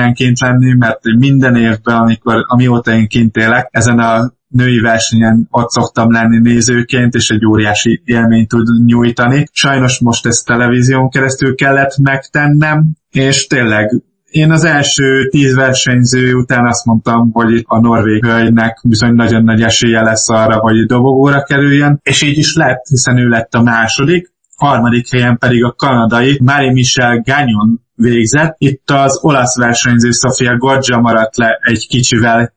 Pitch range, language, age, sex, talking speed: 115-130 Hz, Hungarian, 20-39, male, 150 wpm